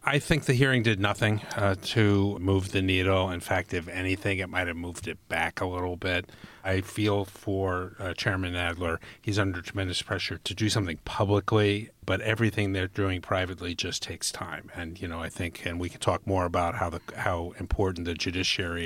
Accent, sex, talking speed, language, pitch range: American, male, 200 wpm, English, 90-105 Hz